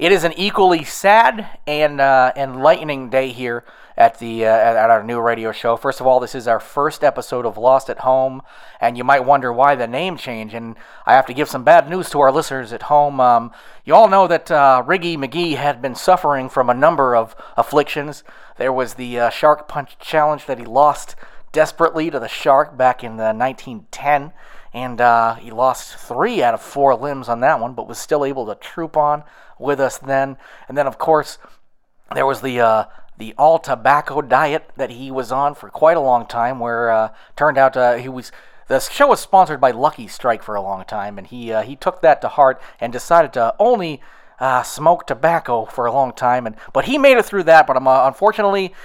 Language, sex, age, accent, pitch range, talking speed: English, male, 30-49, American, 125-160 Hz, 215 wpm